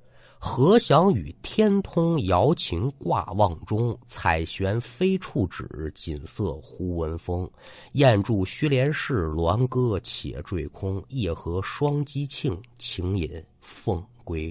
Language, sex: Chinese, male